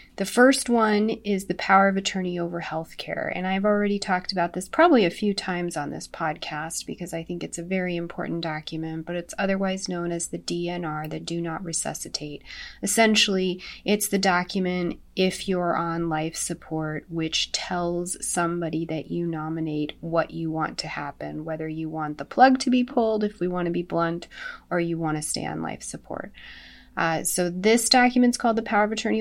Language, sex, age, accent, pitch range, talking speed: English, female, 30-49, American, 160-195 Hz, 195 wpm